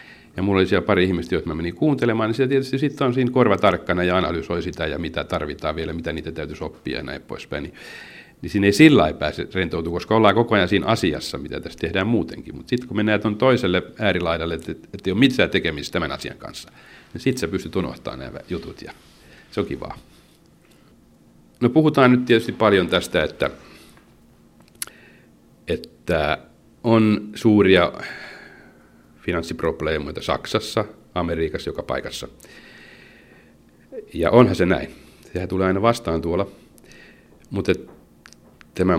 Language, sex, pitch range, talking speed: Finnish, male, 85-110 Hz, 155 wpm